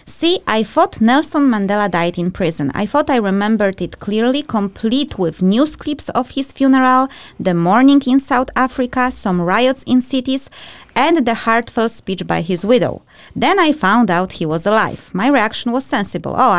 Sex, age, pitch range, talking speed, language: female, 20-39, 185-255 Hz, 175 wpm, English